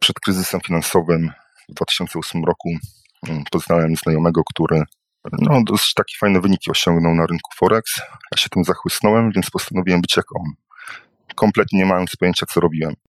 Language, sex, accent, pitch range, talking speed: Polish, male, native, 85-100 Hz, 145 wpm